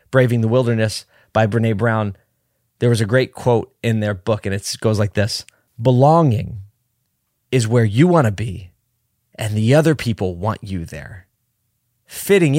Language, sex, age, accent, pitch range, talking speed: English, male, 20-39, American, 105-125 Hz, 160 wpm